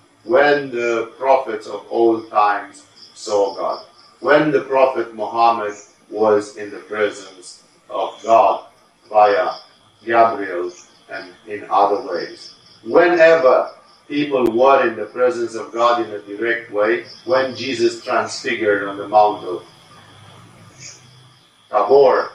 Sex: male